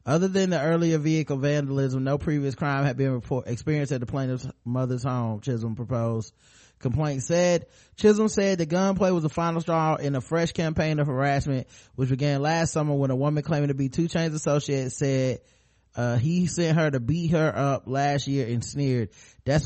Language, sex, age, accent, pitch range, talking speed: English, male, 20-39, American, 130-155 Hz, 190 wpm